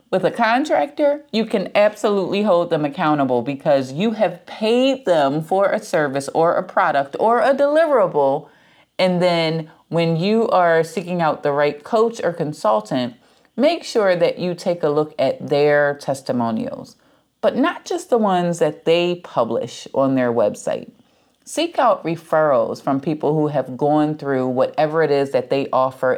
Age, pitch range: 30-49, 145-220 Hz